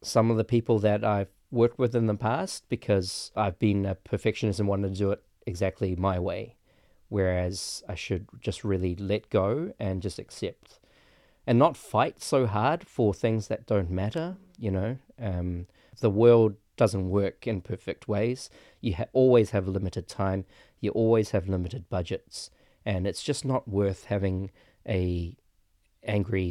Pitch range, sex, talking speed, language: 95-115 Hz, male, 165 wpm, English